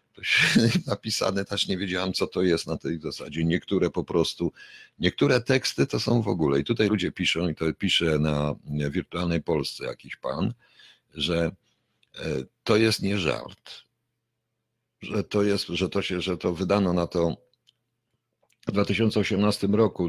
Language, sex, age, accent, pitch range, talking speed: Polish, male, 50-69, native, 85-105 Hz, 150 wpm